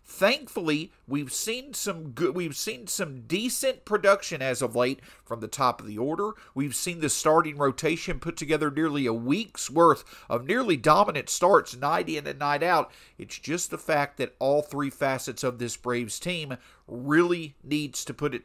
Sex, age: male, 50-69